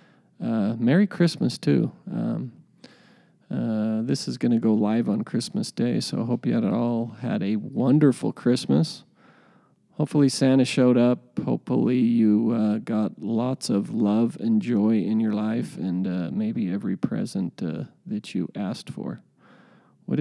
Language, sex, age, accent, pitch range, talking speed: English, male, 40-59, American, 110-145 Hz, 150 wpm